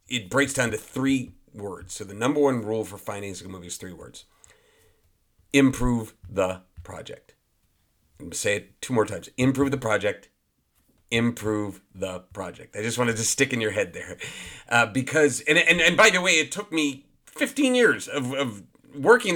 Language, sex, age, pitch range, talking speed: English, male, 40-59, 110-150 Hz, 185 wpm